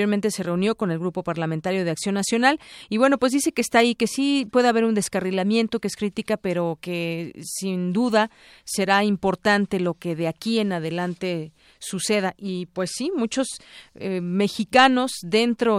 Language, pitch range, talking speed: Spanish, 180-220 Hz, 175 wpm